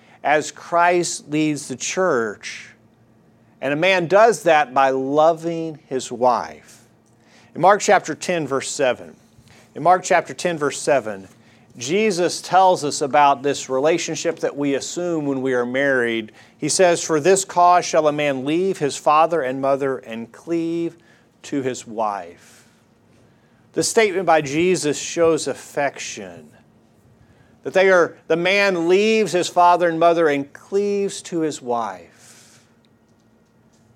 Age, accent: 40-59, American